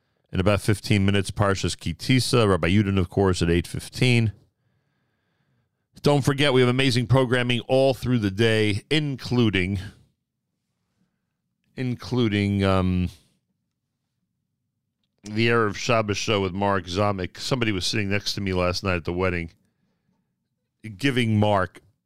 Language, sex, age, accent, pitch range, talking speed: English, male, 40-59, American, 95-125 Hz, 125 wpm